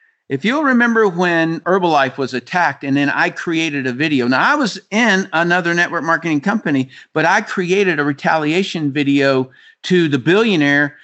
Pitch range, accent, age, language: 145-190 Hz, American, 50-69, English